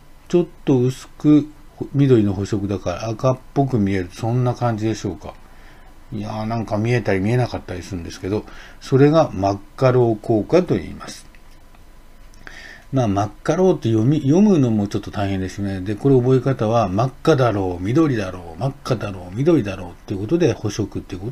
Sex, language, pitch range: male, Japanese, 100-140 Hz